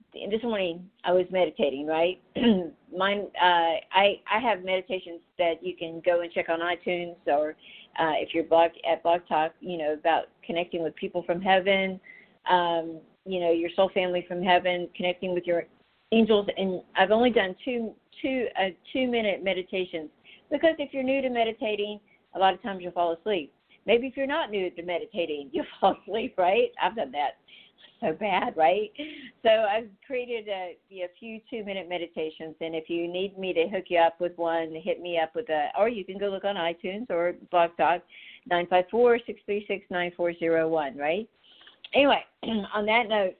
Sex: female